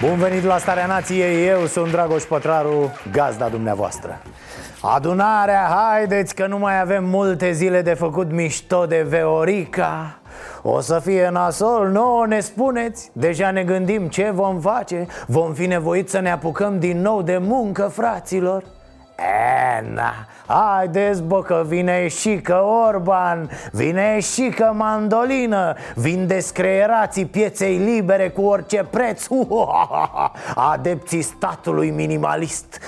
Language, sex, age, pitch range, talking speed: Romanian, male, 30-49, 140-190 Hz, 130 wpm